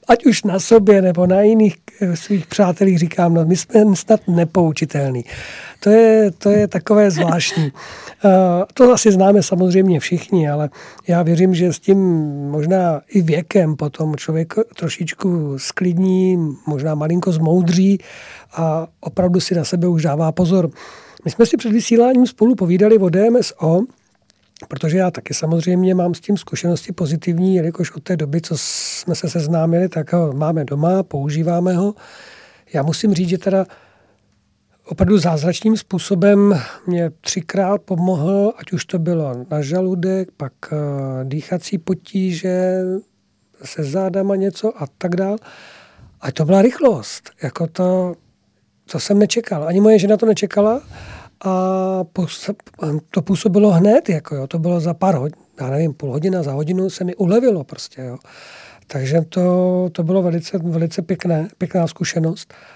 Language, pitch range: Czech, 160-195 Hz